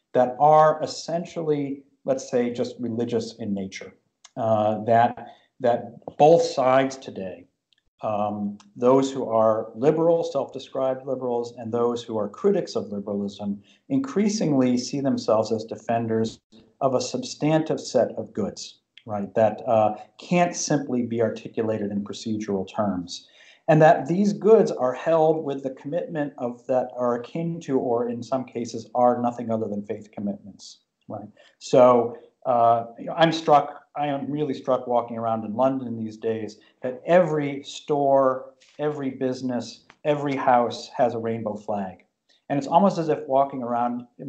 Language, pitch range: English, 115-140 Hz